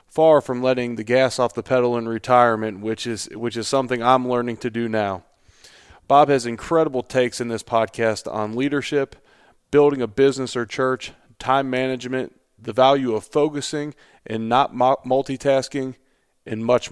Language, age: English, 30-49